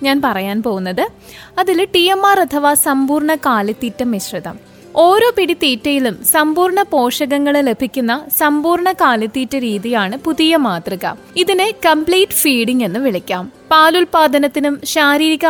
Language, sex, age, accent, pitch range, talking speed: Malayalam, female, 20-39, native, 240-320 Hz, 100 wpm